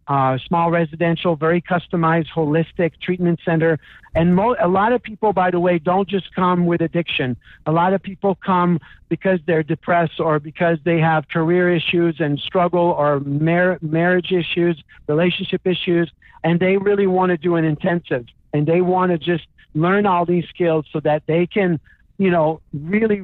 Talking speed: 175 wpm